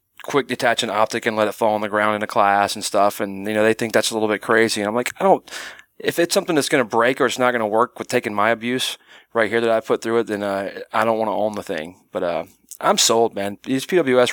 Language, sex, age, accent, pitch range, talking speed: English, male, 30-49, American, 100-115 Hz, 300 wpm